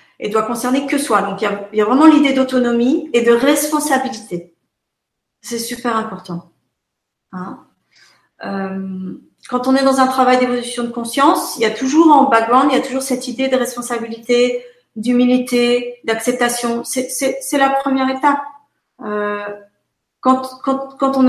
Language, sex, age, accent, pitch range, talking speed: French, female, 40-59, French, 210-270 Hz, 165 wpm